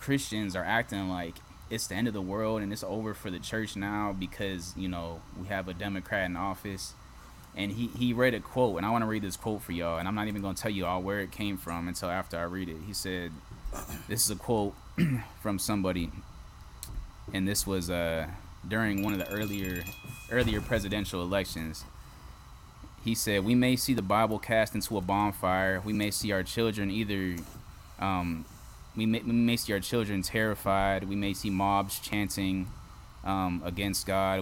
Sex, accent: male, American